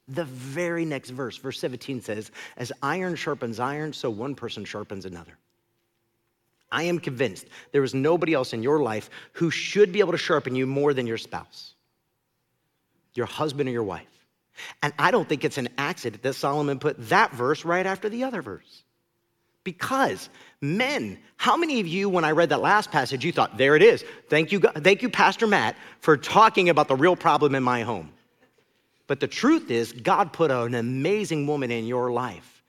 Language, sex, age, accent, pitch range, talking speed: English, male, 40-59, American, 130-175 Hz, 190 wpm